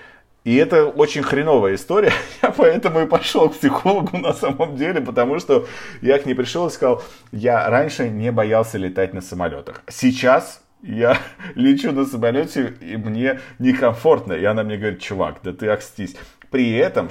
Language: Russian